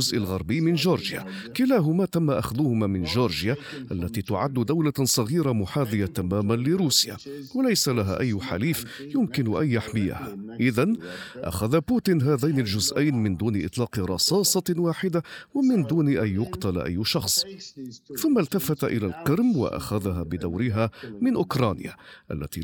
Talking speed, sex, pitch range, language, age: 125 wpm, male, 100-160 Hz, Arabic, 50-69